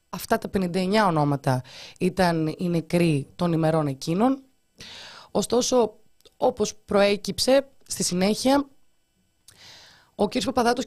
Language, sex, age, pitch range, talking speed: Greek, female, 30-49, 170-215 Hz, 100 wpm